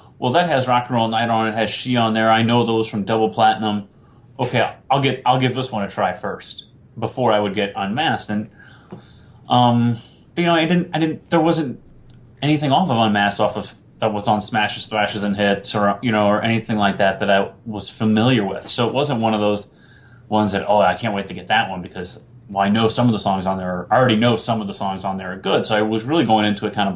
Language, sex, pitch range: English, male, 100-120 Hz